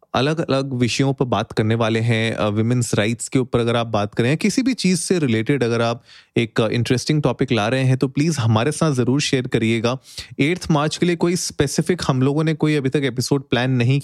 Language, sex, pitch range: Hindi, male, 115-150 Hz